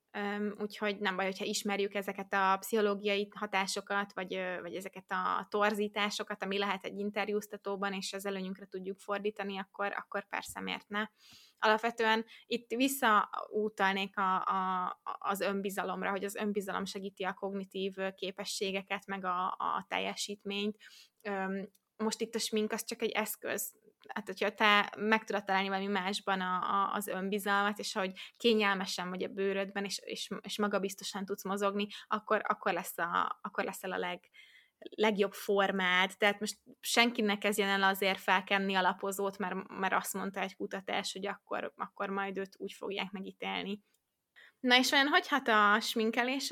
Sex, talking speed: female, 150 wpm